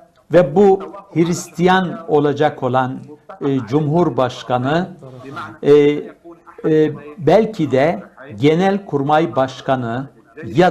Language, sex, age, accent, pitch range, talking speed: Turkish, male, 60-79, native, 135-165 Hz, 80 wpm